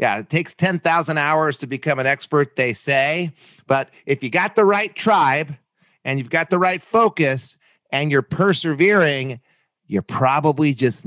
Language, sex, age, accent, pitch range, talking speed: English, male, 40-59, American, 130-170 Hz, 165 wpm